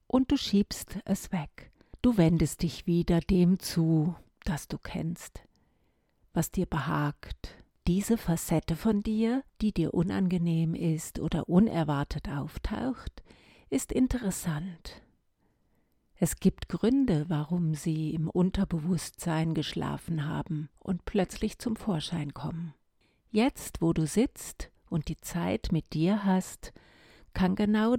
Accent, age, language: German, 50-69, German